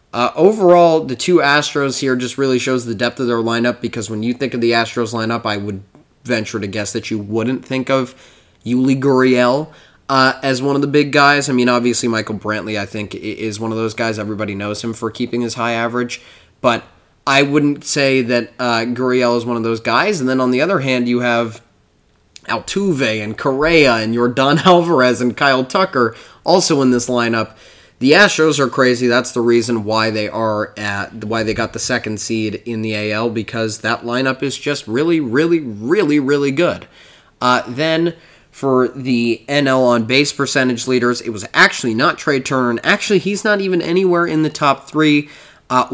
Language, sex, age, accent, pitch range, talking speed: English, male, 20-39, American, 115-140 Hz, 195 wpm